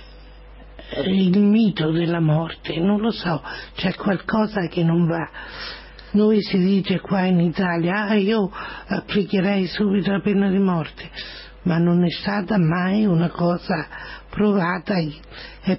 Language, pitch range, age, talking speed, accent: Italian, 170-195 Hz, 50-69, 135 wpm, native